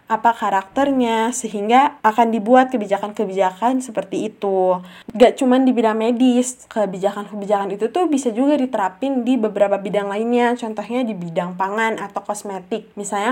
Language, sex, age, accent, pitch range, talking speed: Indonesian, female, 20-39, native, 195-245 Hz, 135 wpm